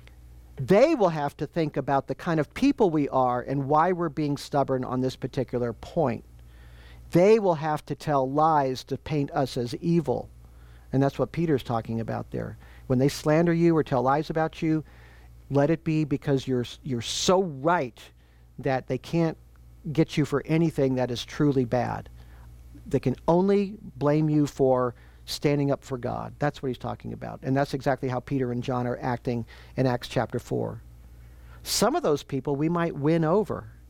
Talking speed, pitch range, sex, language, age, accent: 180 wpm, 120-150 Hz, male, English, 50-69, American